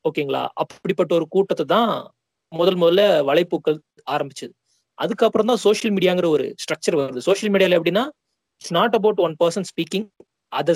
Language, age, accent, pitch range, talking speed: Tamil, 30-49, native, 155-210 Hz, 145 wpm